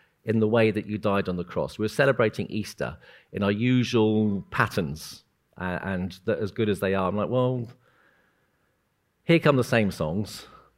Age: 40-59